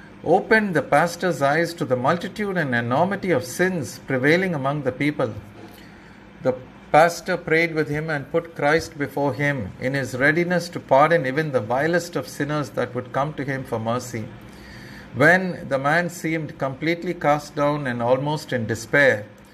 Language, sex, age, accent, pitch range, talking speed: English, male, 50-69, Indian, 125-170 Hz, 165 wpm